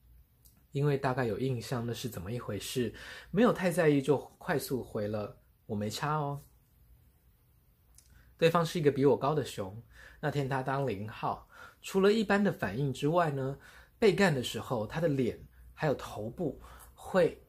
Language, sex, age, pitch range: Chinese, male, 20-39, 105-150 Hz